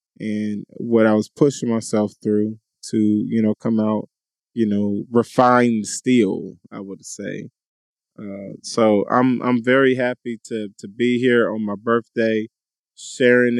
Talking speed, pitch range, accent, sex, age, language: 145 wpm, 110-130 Hz, American, male, 20-39, English